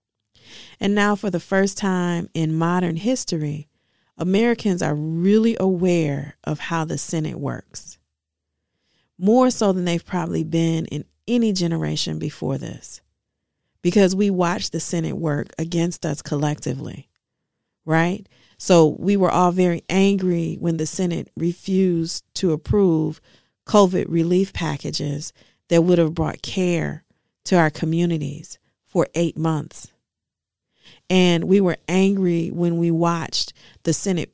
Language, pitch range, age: English, 155-185 Hz, 40-59